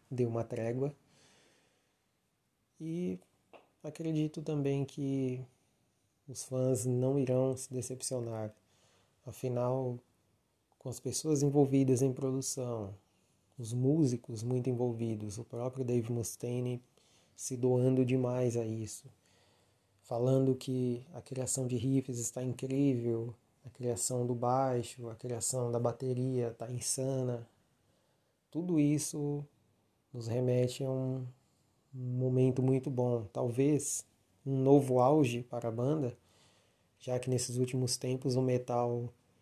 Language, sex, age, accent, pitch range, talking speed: Portuguese, male, 20-39, Brazilian, 120-135 Hz, 115 wpm